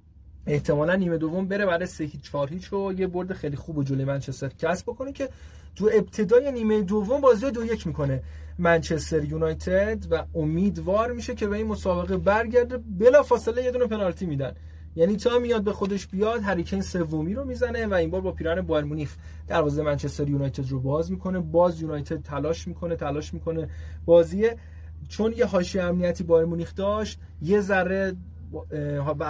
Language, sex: Persian, male